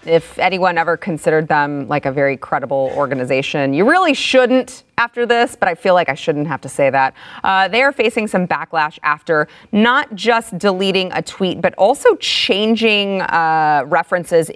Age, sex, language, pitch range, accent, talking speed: 30-49, female, English, 150-205 Hz, American, 175 wpm